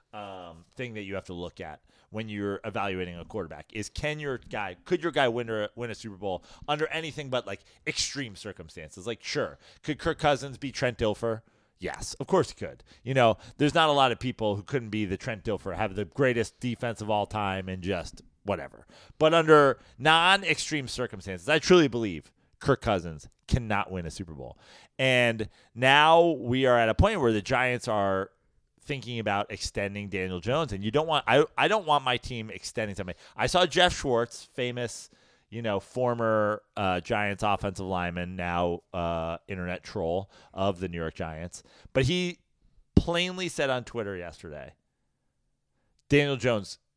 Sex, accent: male, American